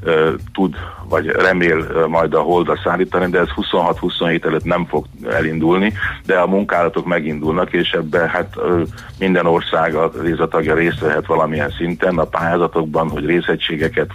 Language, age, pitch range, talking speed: Hungarian, 40-59, 80-95 Hz, 140 wpm